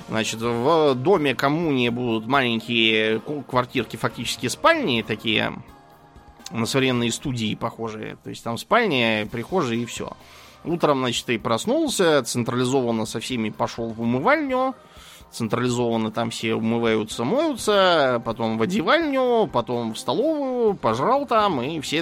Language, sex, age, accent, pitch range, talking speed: Russian, male, 20-39, native, 110-135 Hz, 125 wpm